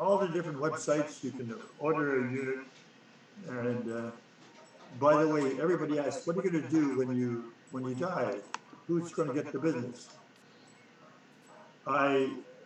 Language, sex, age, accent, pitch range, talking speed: English, male, 60-79, American, 130-160 Hz, 150 wpm